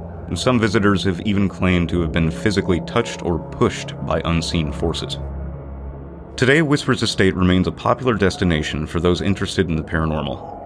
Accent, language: American, English